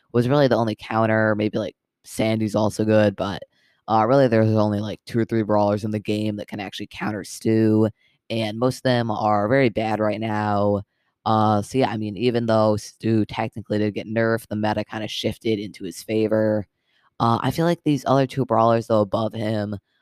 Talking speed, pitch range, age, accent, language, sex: 205 wpm, 105-120 Hz, 20-39, American, English, female